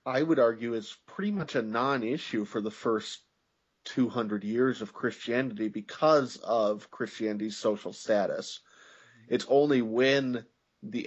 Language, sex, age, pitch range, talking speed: English, male, 30-49, 105-120 Hz, 130 wpm